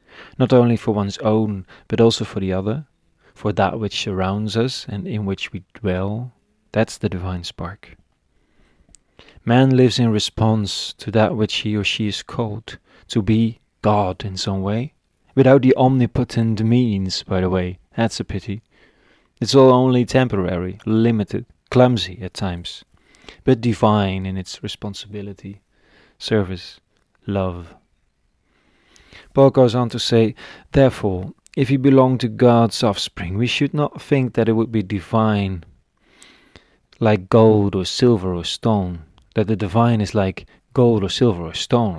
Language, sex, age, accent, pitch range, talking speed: English, male, 30-49, Dutch, 95-120 Hz, 150 wpm